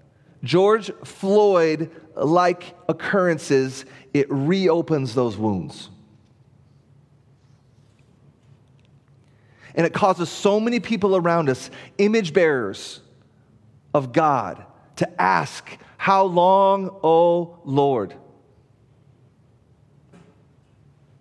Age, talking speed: 30-49, 70 wpm